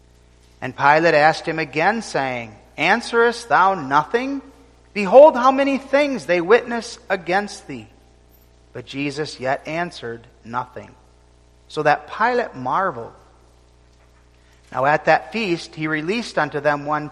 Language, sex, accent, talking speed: English, male, American, 125 wpm